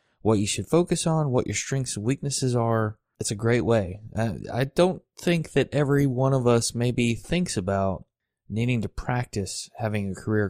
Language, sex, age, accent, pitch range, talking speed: English, male, 20-39, American, 105-135 Hz, 185 wpm